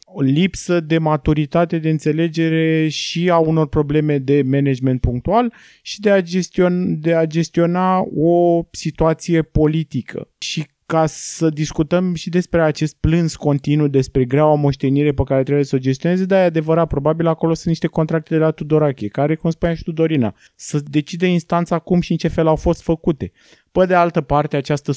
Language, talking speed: Romanian, 165 wpm